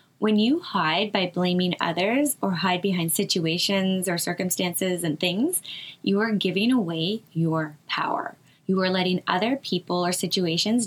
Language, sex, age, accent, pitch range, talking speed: English, female, 10-29, American, 170-215 Hz, 150 wpm